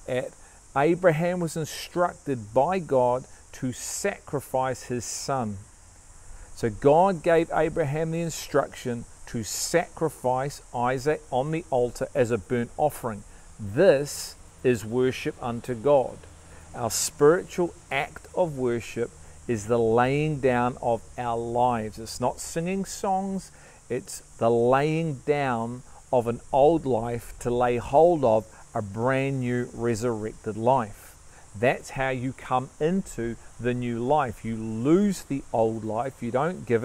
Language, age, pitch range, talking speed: English, 40-59, 110-140 Hz, 130 wpm